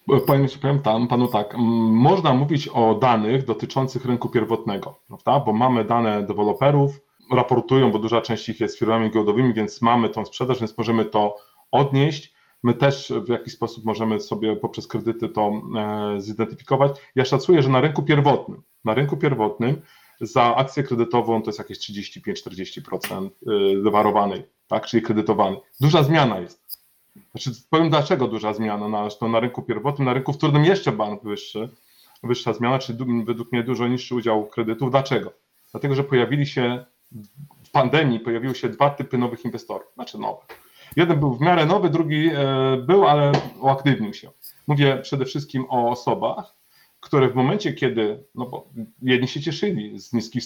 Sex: male